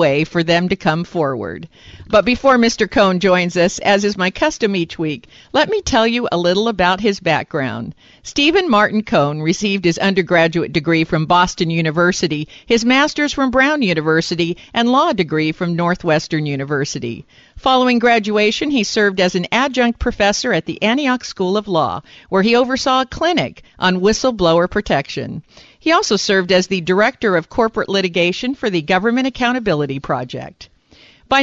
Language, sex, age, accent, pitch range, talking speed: English, female, 50-69, American, 170-235 Hz, 160 wpm